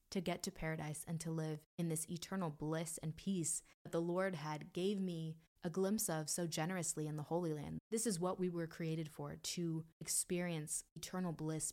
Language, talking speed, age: English, 200 wpm, 20-39